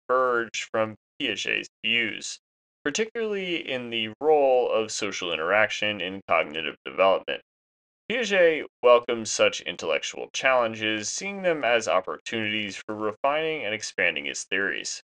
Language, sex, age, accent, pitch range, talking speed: English, male, 20-39, American, 105-140 Hz, 115 wpm